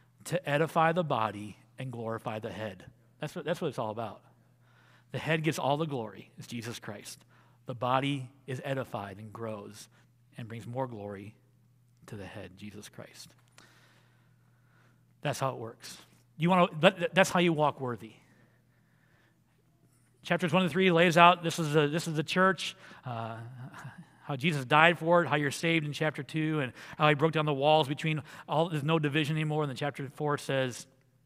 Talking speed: 175 wpm